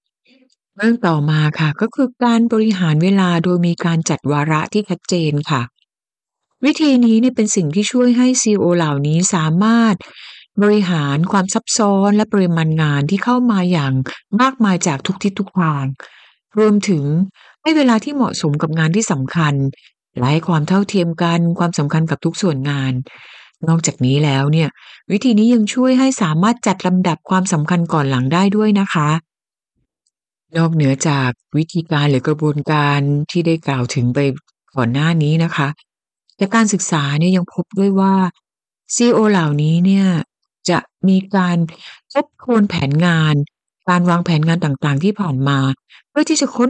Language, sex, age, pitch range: Thai, female, 60-79, 150-205 Hz